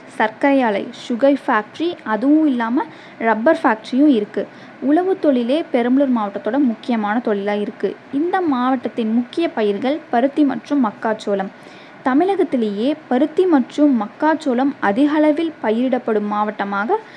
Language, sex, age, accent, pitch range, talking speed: Tamil, female, 20-39, native, 220-295 Hz, 110 wpm